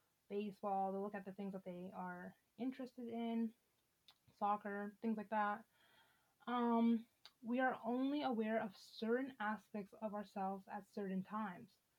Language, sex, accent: English, female, American